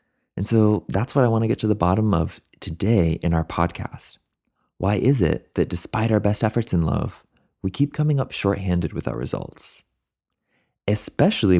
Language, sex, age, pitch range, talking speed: English, male, 30-49, 85-120 Hz, 180 wpm